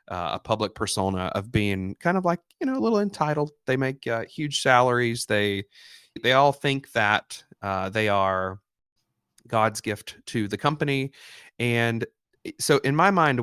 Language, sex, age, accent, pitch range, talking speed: English, male, 30-49, American, 100-135 Hz, 165 wpm